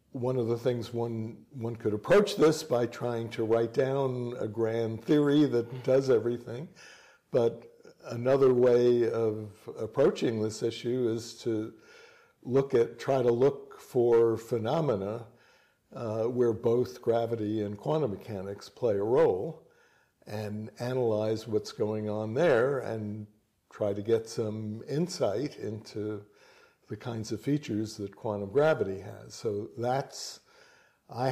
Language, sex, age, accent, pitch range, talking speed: Danish, male, 60-79, American, 105-125 Hz, 135 wpm